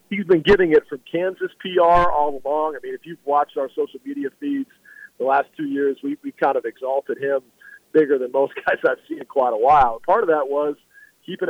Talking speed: 225 wpm